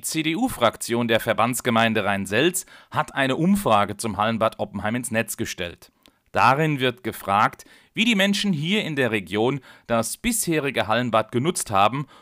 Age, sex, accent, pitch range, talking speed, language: 40-59, male, German, 115-165 Hz, 140 wpm, German